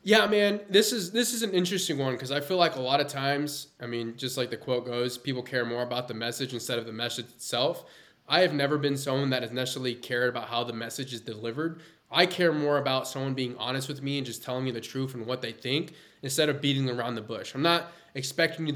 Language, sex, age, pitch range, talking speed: English, male, 20-39, 125-150 Hz, 255 wpm